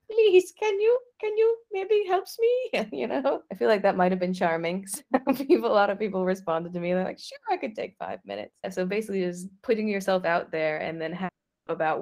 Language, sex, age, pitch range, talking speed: English, female, 20-39, 165-215 Hz, 220 wpm